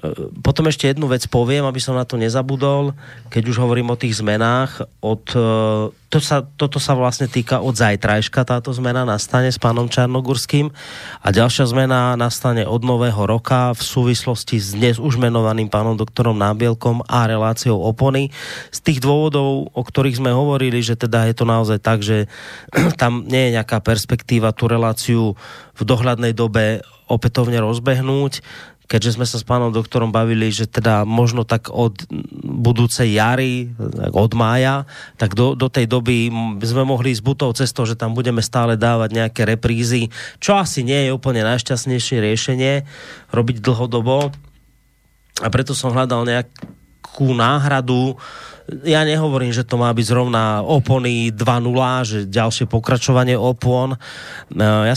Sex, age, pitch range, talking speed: male, 30-49, 115-130 Hz, 150 wpm